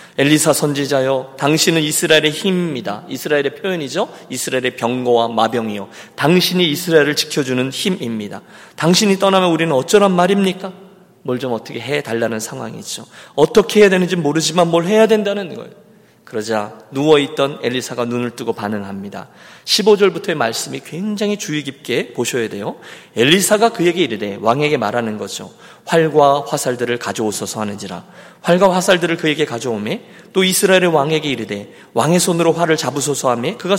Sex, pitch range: male, 125-185 Hz